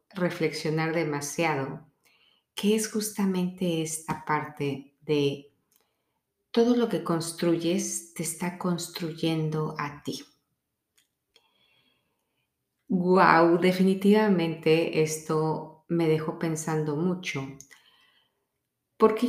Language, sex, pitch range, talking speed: Spanish, female, 145-170 Hz, 80 wpm